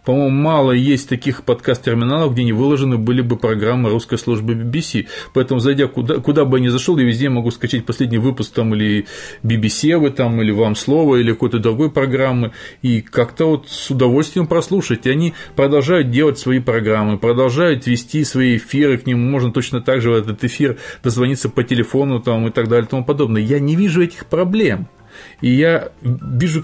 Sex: male